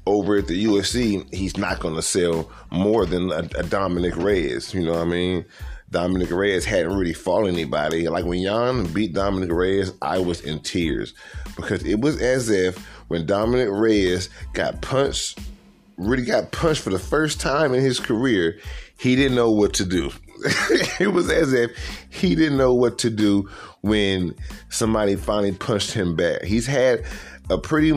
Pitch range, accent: 90-115 Hz, American